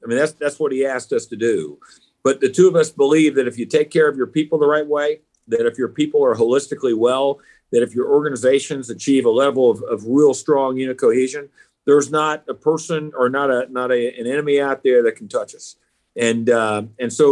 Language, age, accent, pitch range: English, 50-69, American, 130-200 Hz